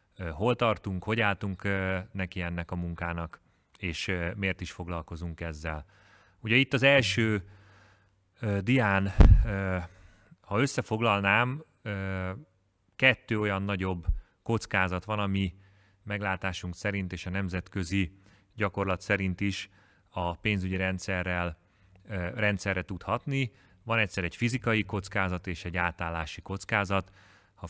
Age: 30-49